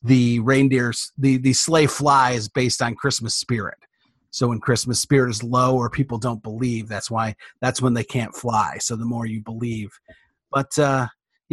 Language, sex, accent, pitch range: English, male, American, 130-185 Hz